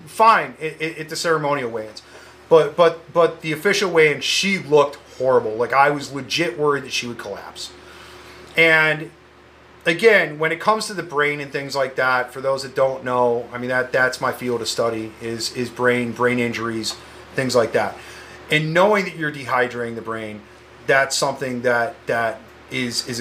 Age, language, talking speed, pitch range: 30-49, English, 185 wpm, 125-165 Hz